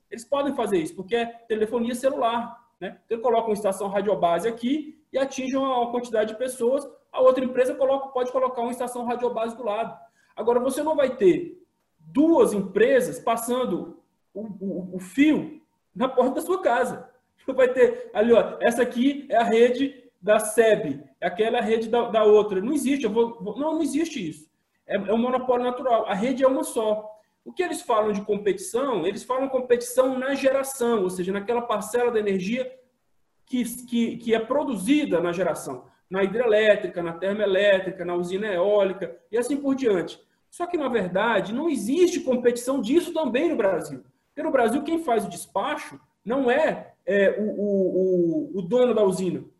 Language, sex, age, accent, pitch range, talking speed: Portuguese, male, 20-39, Brazilian, 205-265 Hz, 180 wpm